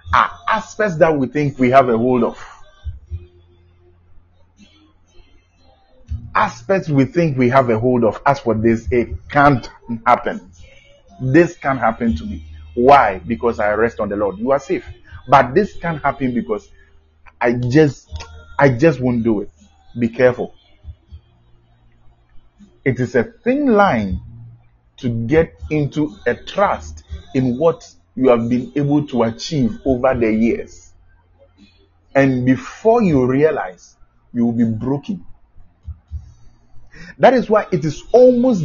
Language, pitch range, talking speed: English, 90-140 Hz, 135 wpm